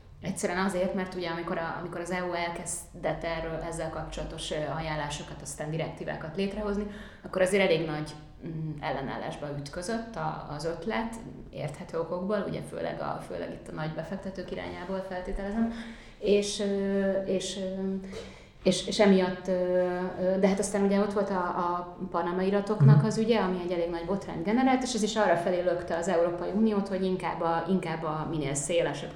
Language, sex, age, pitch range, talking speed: Hungarian, female, 30-49, 165-195 Hz, 150 wpm